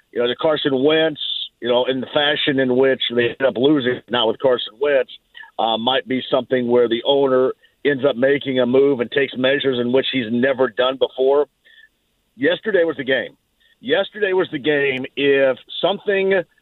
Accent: American